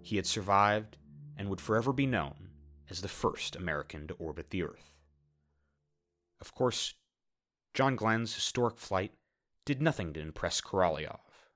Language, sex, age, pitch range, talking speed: English, male, 30-49, 85-120 Hz, 140 wpm